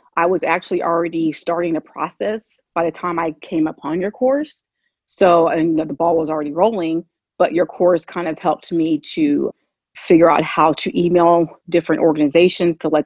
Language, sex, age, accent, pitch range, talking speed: English, female, 30-49, American, 155-190 Hz, 180 wpm